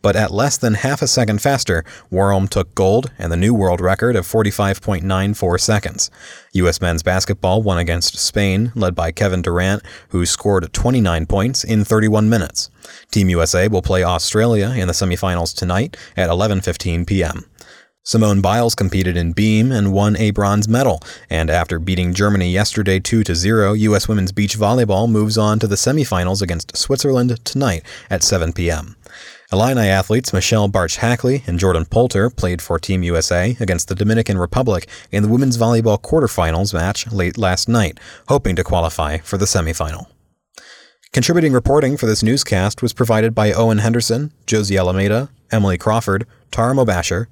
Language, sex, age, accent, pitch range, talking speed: English, male, 30-49, American, 90-115 Hz, 160 wpm